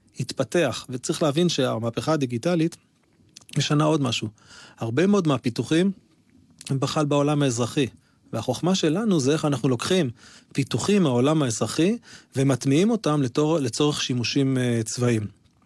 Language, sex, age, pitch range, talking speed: Hebrew, male, 30-49, 125-155 Hz, 120 wpm